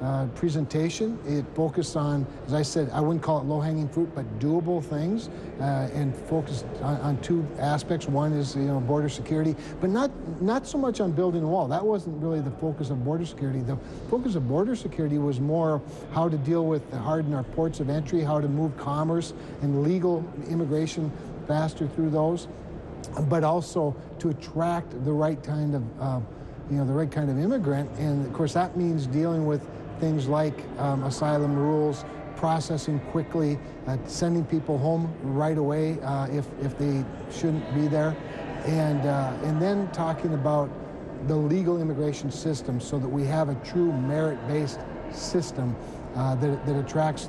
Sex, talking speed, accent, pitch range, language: male, 175 wpm, American, 140-160 Hz, English